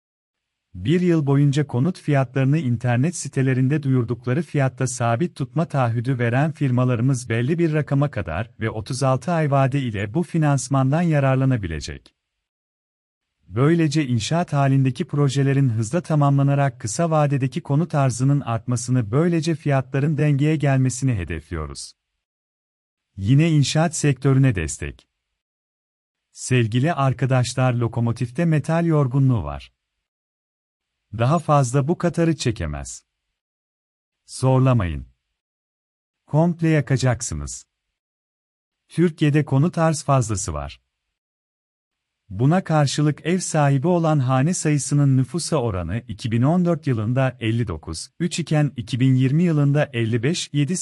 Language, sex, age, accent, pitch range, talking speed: Turkish, male, 40-59, native, 115-150 Hz, 95 wpm